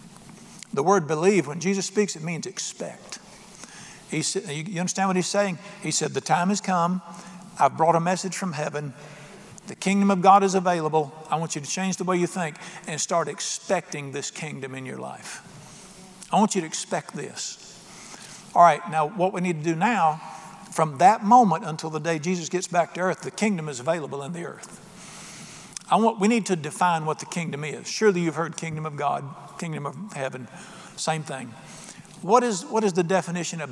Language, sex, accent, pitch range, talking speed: English, male, American, 155-195 Hz, 200 wpm